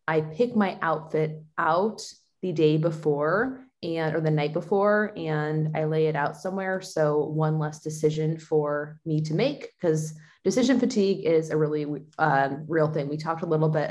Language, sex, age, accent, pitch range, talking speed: English, female, 20-39, American, 155-195 Hz, 175 wpm